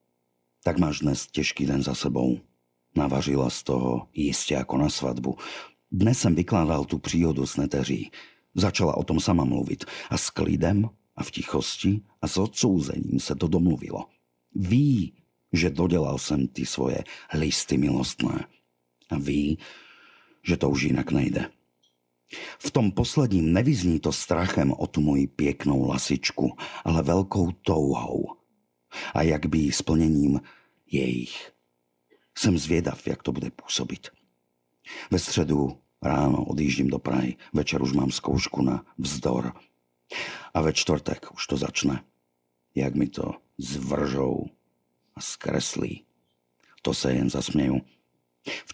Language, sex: Slovak, male